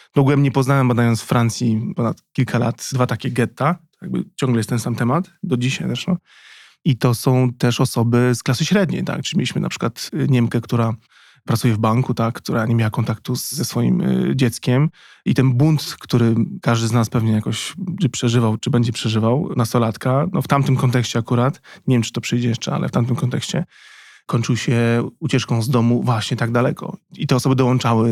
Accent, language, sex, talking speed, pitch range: native, Polish, male, 185 wpm, 115-140 Hz